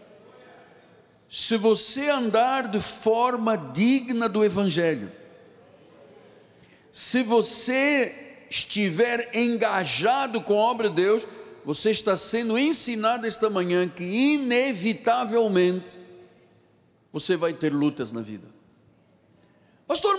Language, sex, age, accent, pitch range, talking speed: Portuguese, male, 60-79, Brazilian, 175-235 Hz, 95 wpm